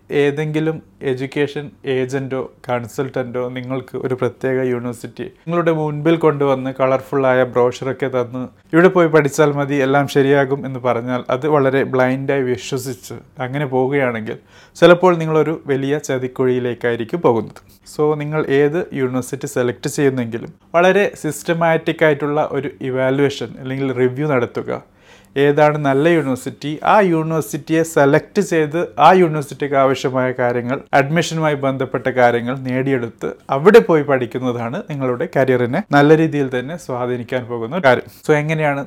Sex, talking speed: male, 115 wpm